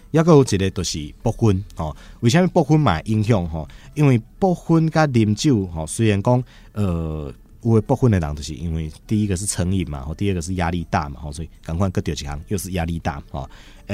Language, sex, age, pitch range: Chinese, male, 30-49, 85-110 Hz